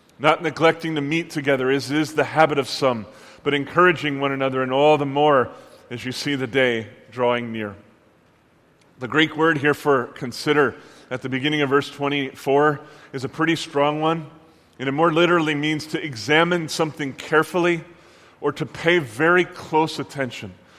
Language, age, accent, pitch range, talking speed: English, 30-49, American, 140-180 Hz, 165 wpm